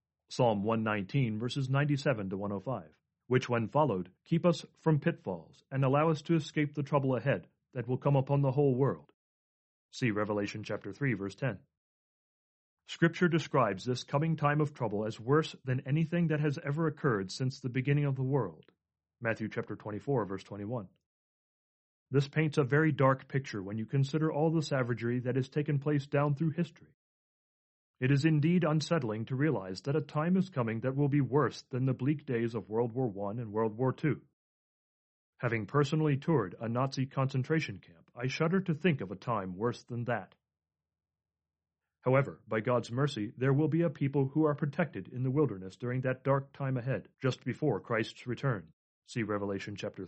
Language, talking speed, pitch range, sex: English, 180 wpm, 110-145 Hz, male